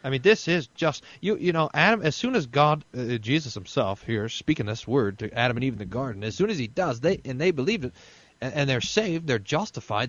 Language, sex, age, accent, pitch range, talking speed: English, male, 40-59, American, 115-180 Hz, 255 wpm